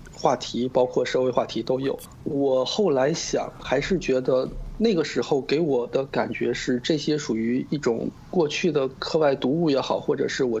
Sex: male